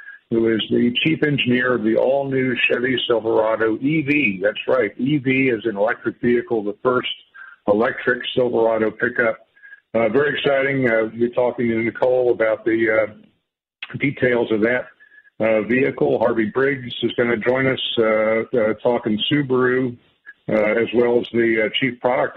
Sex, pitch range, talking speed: male, 110-125 Hz, 160 wpm